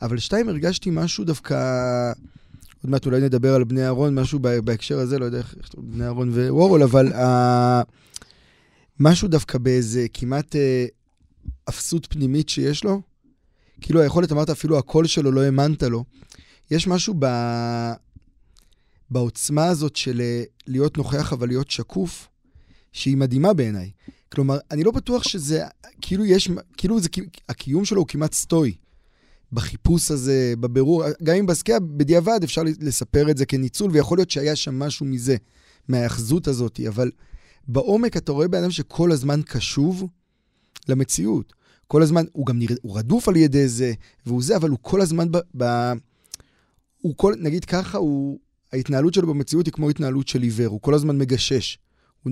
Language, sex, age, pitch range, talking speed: Hebrew, male, 20-39, 125-160 Hz, 155 wpm